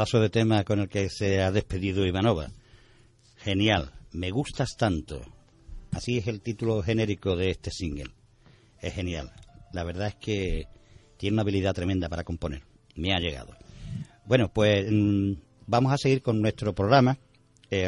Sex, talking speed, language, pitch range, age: male, 155 wpm, Spanish, 95-120 Hz, 50-69